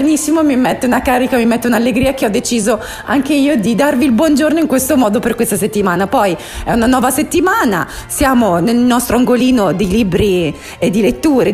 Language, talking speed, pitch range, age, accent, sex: Italian, 195 wpm, 190-265 Hz, 30-49, native, female